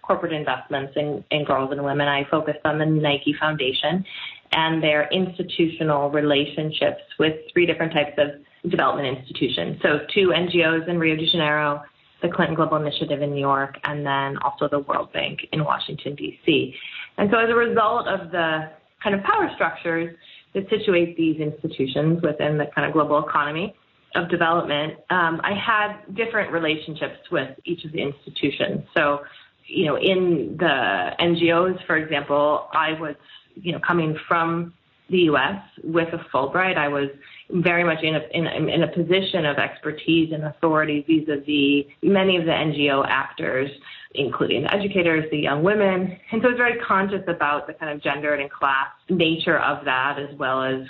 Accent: American